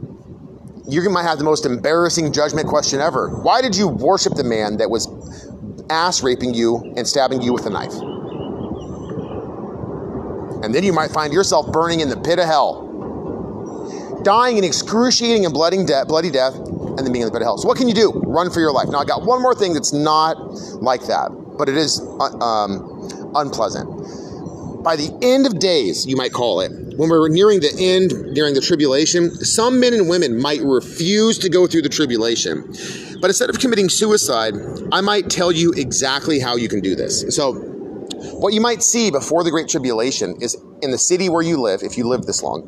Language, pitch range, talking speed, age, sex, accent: English, 130-190 Hz, 200 wpm, 30-49, male, American